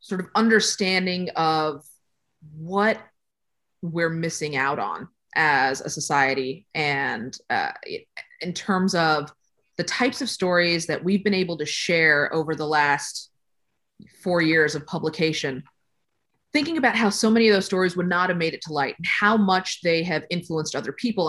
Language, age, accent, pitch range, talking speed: English, 30-49, American, 155-200 Hz, 160 wpm